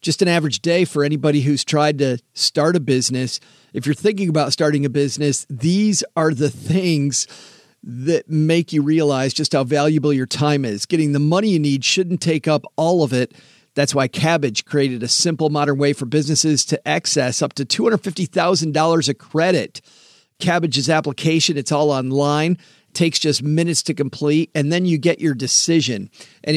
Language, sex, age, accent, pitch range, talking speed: English, male, 40-59, American, 135-165 Hz, 175 wpm